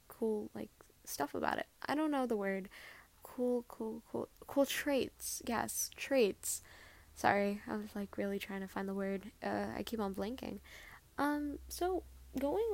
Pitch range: 210-305 Hz